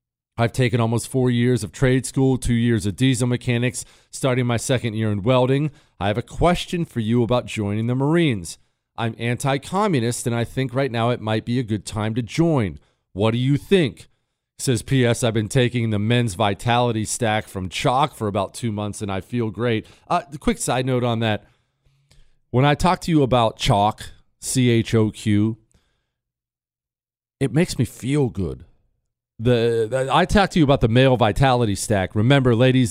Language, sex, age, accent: English, male, 40-59, American